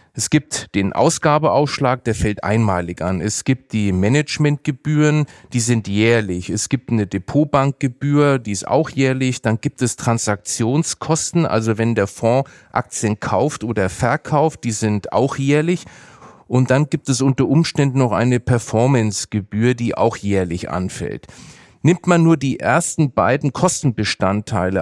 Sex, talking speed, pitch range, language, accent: male, 145 wpm, 110-145 Hz, German, German